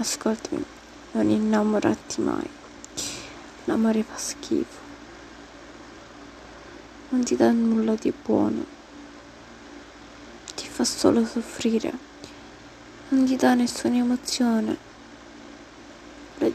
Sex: female